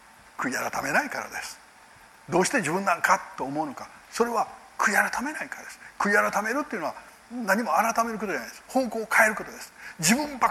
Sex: male